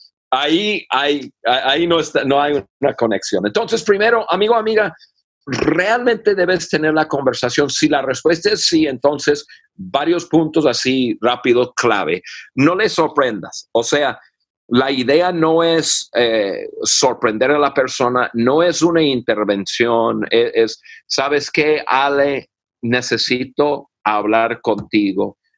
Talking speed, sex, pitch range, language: 130 wpm, male, 125-185 Hz, Spanish